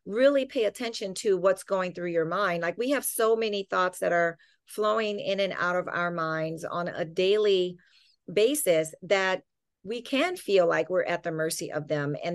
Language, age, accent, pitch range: English, 40-59, American, 175-225 Hz